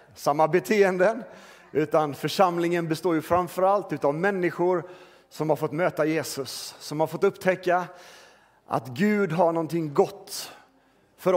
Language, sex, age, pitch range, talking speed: Swedish, male, 40-59, 150-195 Hz, 125 wpm